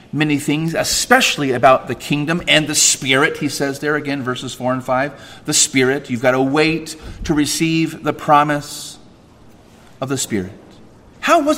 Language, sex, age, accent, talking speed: English, male, 40-59, American, 165 wpm